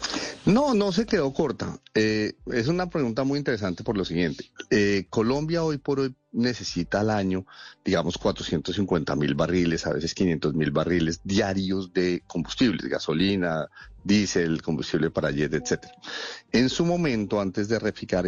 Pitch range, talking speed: 85-120 Hz, 150 wpm